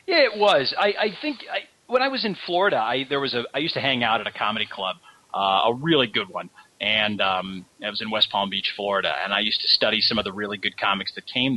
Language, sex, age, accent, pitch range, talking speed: English, male, 40-59, American, 110-160 Hz, 270 wpm